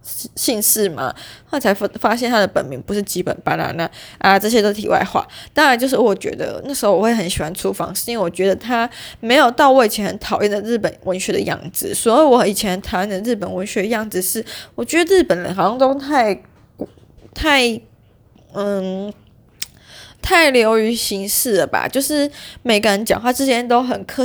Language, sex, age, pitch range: Chinese, female, 20-39, 195-255 Hz